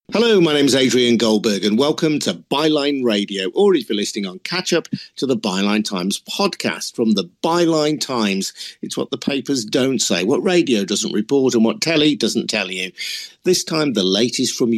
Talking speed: 195 wpm